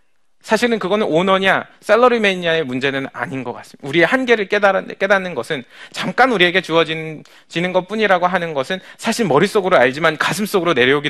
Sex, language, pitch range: male, Korean, 150-220 Hz